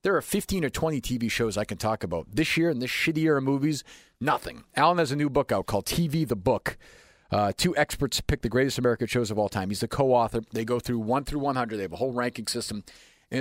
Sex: male